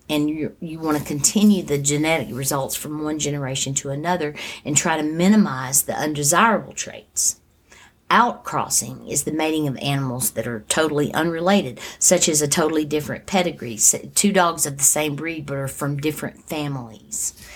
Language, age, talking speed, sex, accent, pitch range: English, 50-69, 165 wpm, female, American, 135-165 Hz